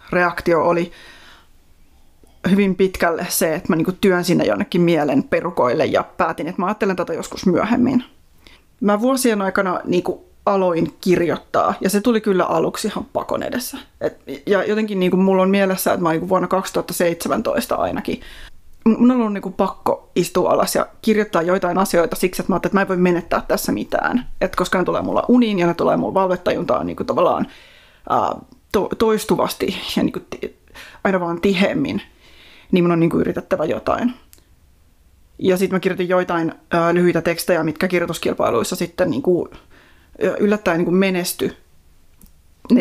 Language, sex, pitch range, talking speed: Finnish, female, 170-200 Hz, 145 wpm